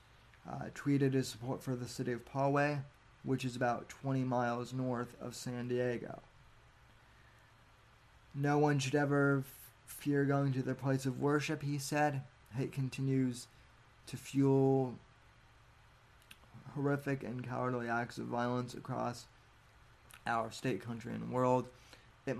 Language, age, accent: English, 20-39, American